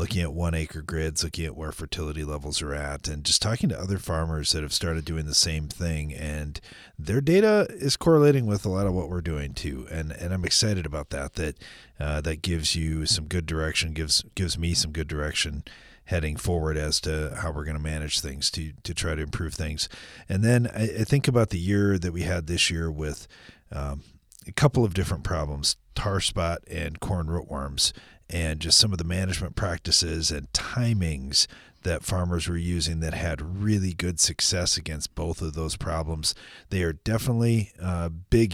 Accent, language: American, English